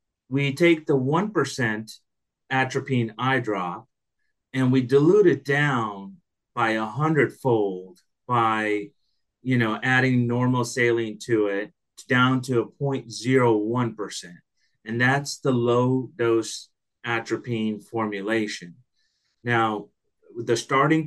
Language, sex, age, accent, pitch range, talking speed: English, male, 30-49, American, 115-135 Hz, 120 wpm